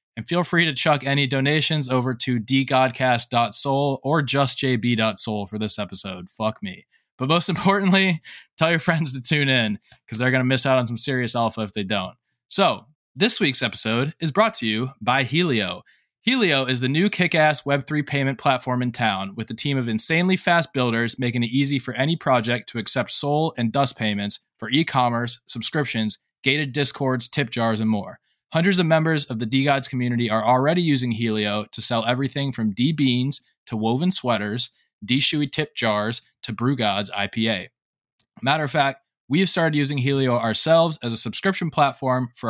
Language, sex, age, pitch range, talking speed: English, male, 20-39, 115-145 Hz, 180 wpm